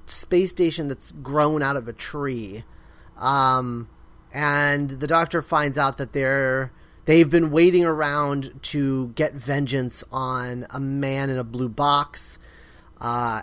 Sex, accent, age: male, American, 30-49